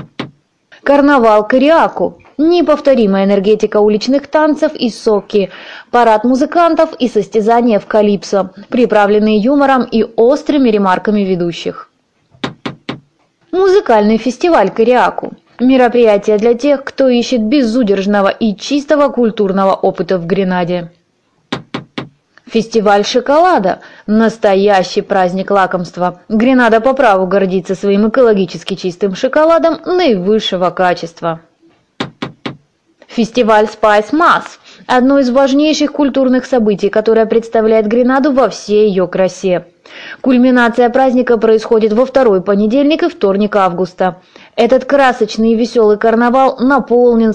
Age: 20-39